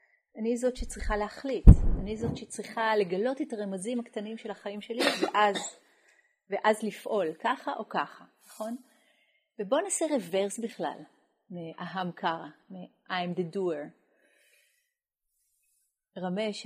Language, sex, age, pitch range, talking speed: Hebrew, female, 30-49, 175-230 Hz, 110 wpm